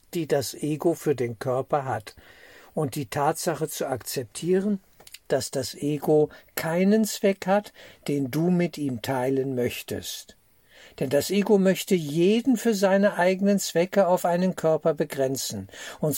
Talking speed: 140 wpm